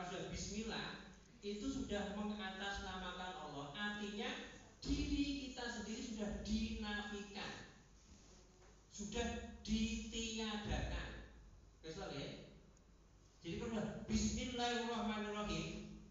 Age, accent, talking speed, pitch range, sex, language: 40-59, native, 70 wpm, 175-215 Hz, male, Indonesian